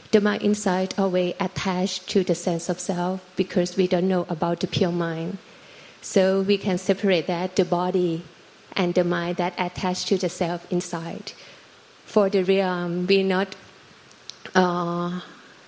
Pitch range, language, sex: 175-195 Hz, Thai, female